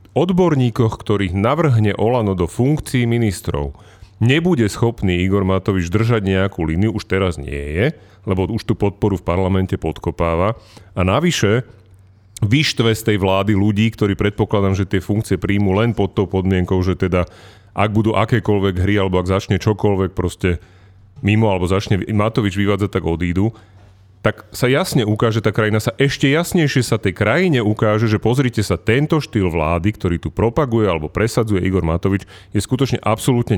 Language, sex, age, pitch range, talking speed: Slovak, male, 40-59, 95-115 Hz, 160 wpm